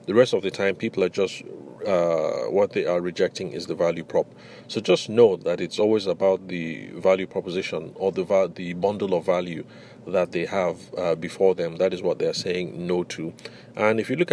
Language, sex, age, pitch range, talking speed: English, male, 30-49, 95-120 Hz, 220 wpm